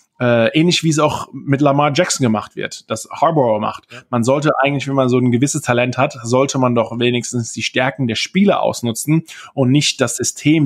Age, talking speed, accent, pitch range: 20-39, 195 wpm, German, 120-140 Hz